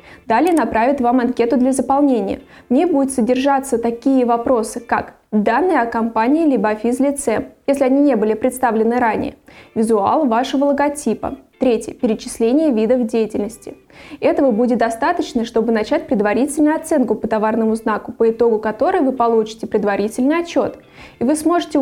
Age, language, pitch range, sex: 20-39, Russian, 225-280 Hz, female